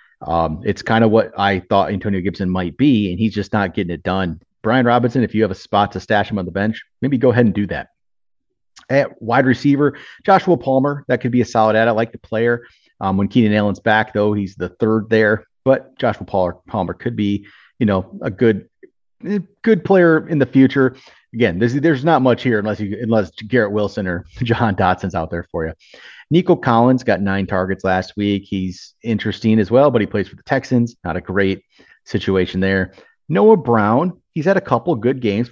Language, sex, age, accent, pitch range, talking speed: English, male, 30-49, American, 95-125 Hz, 210 wpm